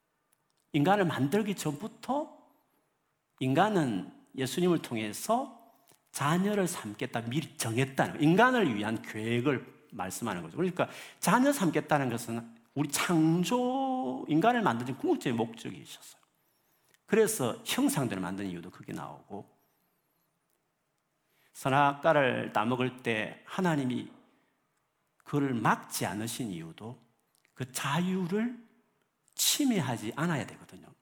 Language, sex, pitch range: Korean, male, 130-210 Hz